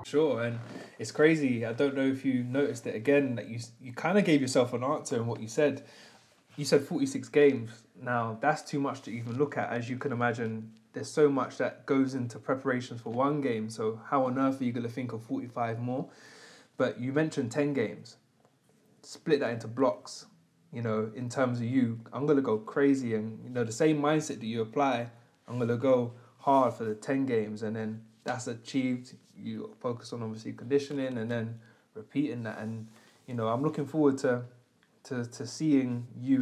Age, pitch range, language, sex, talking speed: 20-39, 115-140 Hz, English, male, 205 wpm